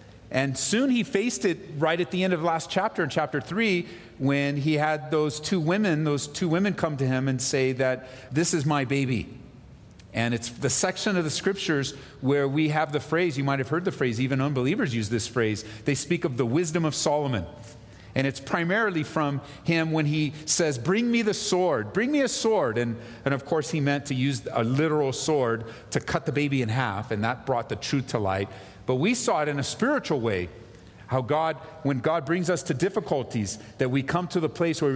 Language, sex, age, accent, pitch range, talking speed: English, male, 40-59, American, 130-170 Hz, 220 wpm